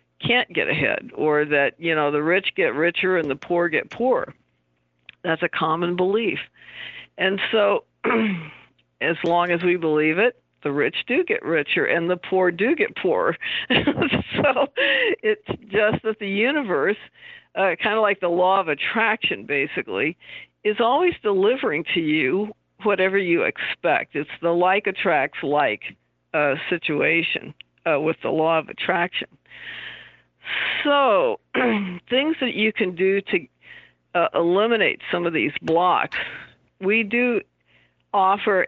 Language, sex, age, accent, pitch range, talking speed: English, female, 50-69, American, 160-215 Hz, 140 wpm